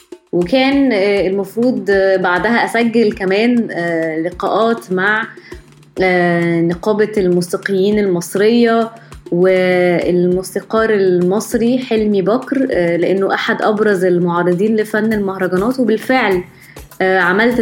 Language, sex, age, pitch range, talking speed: Arabic, female, 20-39, 185-240 Hz, 75 wpm